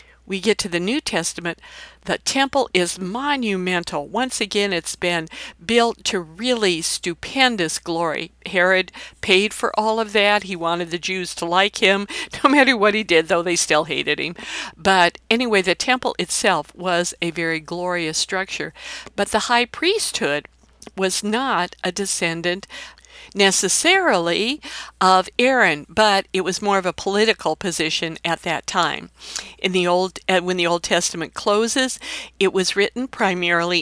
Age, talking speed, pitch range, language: 50-69, 155 wpm, 175-225 Hz, English